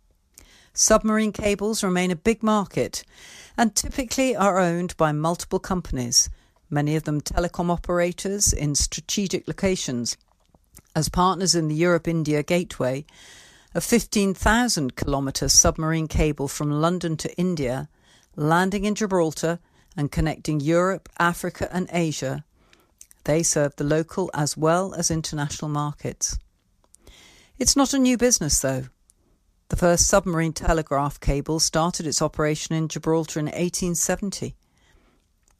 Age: 50-69